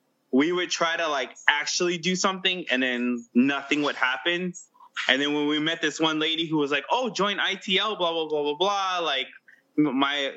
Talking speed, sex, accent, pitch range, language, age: 195 wpm, male, American, 135-175 Hz, English, 20-39